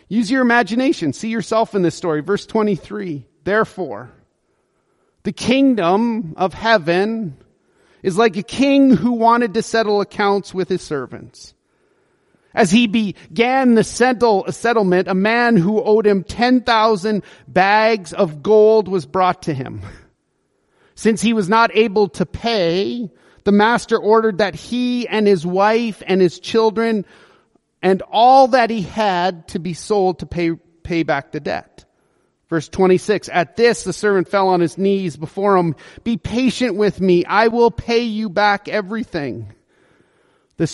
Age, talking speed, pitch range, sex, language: 40-59, 150 wpm, 180-225 Hz, male, English